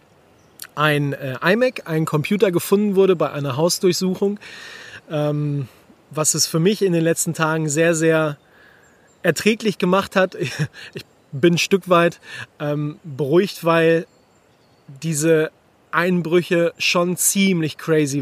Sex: male